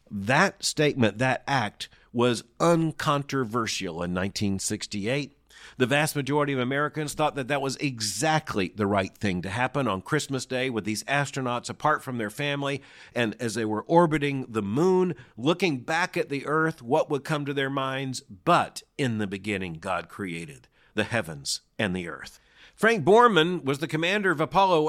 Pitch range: 120-165 Hz